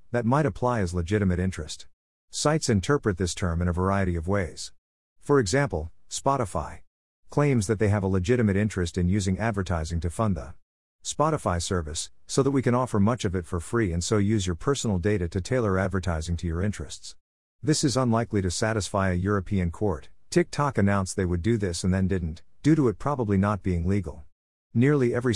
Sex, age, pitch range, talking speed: male, 50-69, 90-115 Hz, 190 wpm